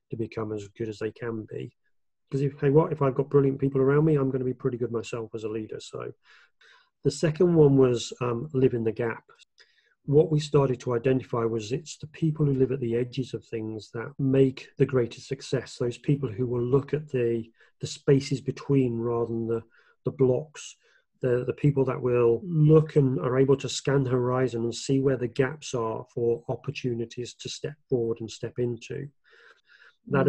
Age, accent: 30-49, British